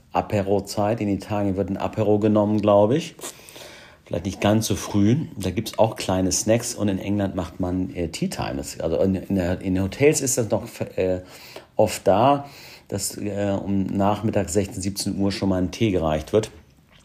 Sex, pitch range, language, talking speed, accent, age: male, 90-105 Hz, German, 175 wpm, German, 50-69